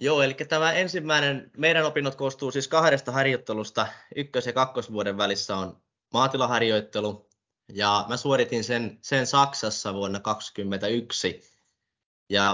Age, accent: 20-39, native